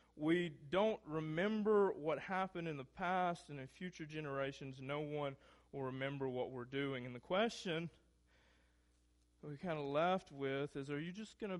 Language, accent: English, American